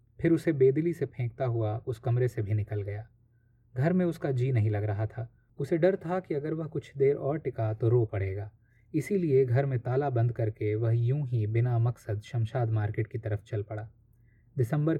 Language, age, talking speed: Hindi, 20-39, 205 wpm